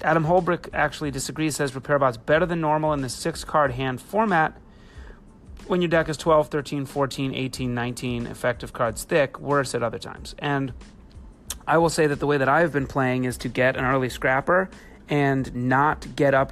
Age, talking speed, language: 30-49, 190 wpm, English